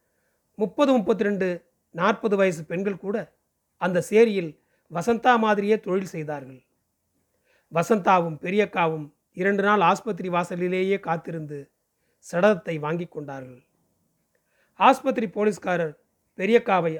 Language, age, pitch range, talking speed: Tamil, 40-59, 155-205 Hz, 90 wpm